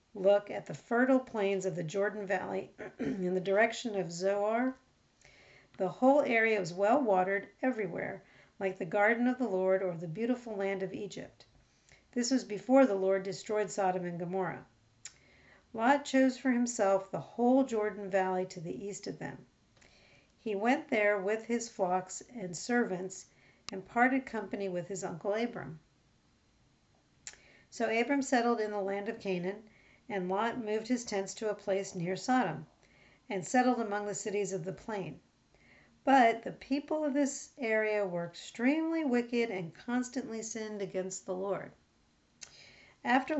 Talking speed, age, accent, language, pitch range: 155 wpm, 50-69, American, English, 190-240 Hz